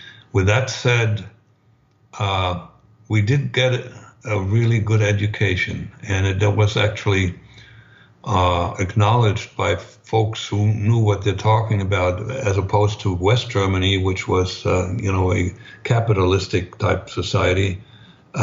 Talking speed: 125 wpm